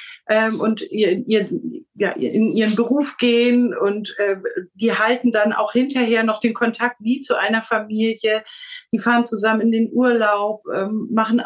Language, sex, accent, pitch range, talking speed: German, female, German, 195-230 Hz, 160 wpm